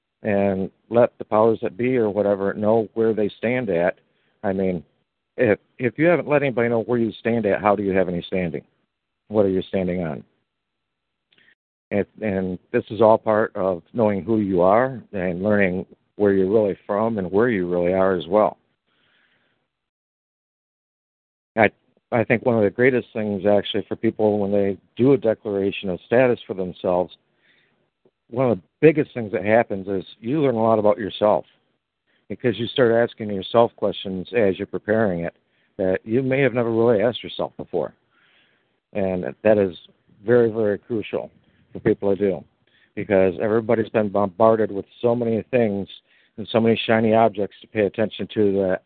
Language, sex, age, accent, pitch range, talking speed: English, male, 50-69, American, 95-115 Hz, 175 wpm